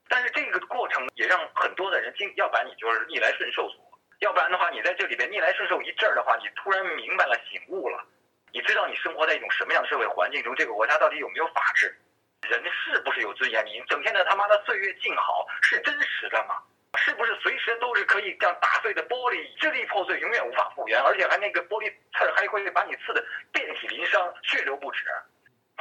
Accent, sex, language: native, male, Chinese